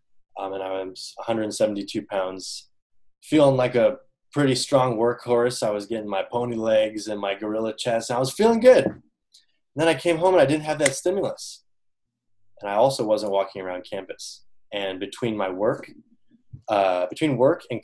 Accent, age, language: American, 20-39, English